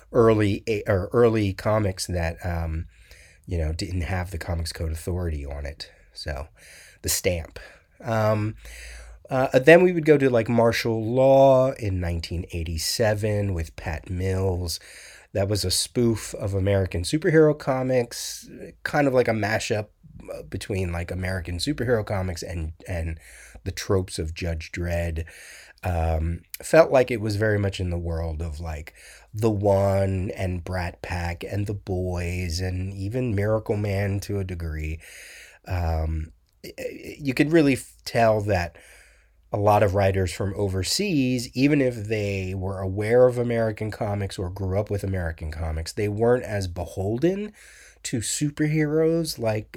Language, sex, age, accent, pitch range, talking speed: English, male, 30-49, American, 85-115 Hz, 145 wpm